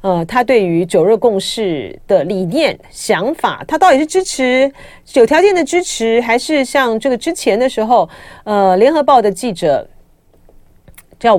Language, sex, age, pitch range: Chinese, female, 40-59, 190-285 Hz